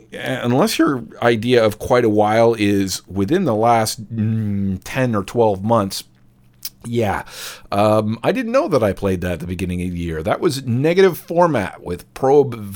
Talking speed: 175 wpm